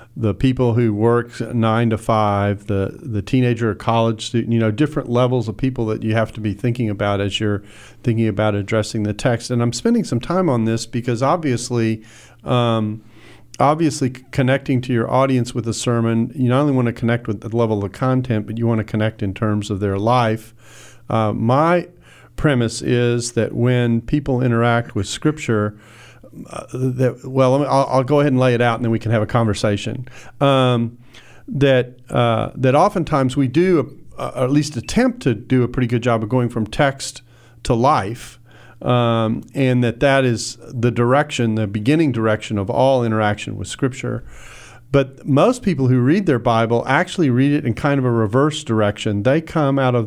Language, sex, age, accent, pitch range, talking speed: English, male, 40-59, American, 110-130 Hz, 190 wpm